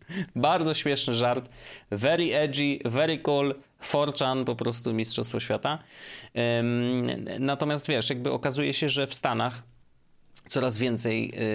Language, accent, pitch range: Polish, native, 105-130 Hz